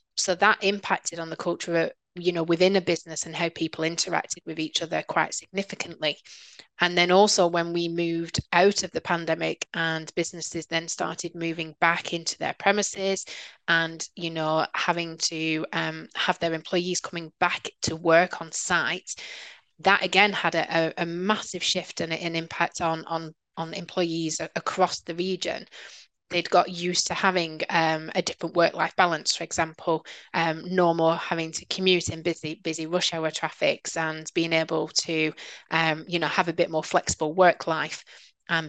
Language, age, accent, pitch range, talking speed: English, 20-39, British, 160-180 Hz, 170 wpm